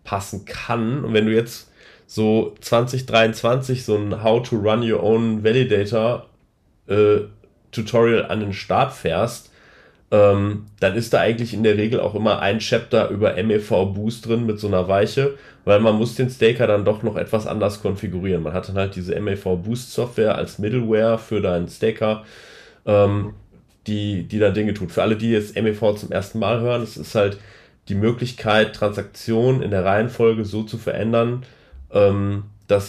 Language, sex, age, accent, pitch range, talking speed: German, male, 30-49, German, 100-115 Hz, 175 wpm